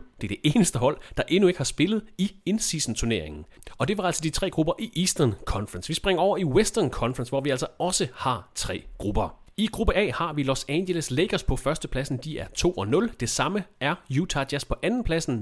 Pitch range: 125-175 Hz